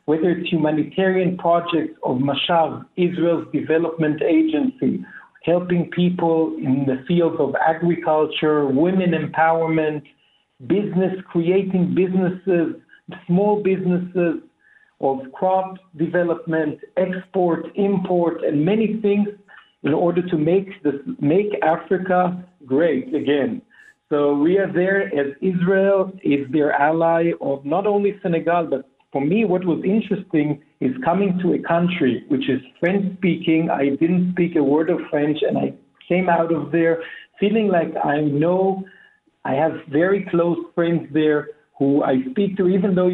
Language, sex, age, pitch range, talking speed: English, male, 60-79, 155-185 Hz, 135 wpm